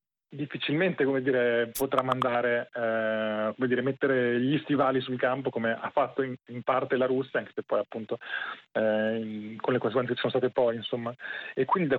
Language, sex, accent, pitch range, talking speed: Italian, male, native, 115-135 Hz, 195 wpm